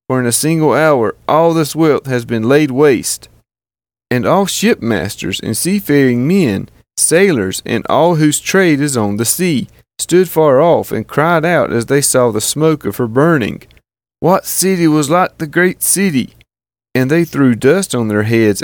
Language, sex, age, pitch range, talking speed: English, male, 30-49, 120-160 Hz, 175 wpm